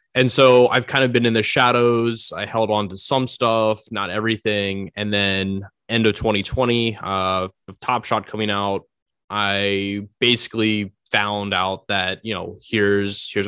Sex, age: male, 20-39